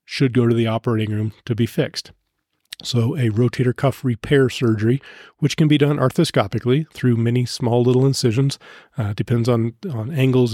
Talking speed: 170 wpm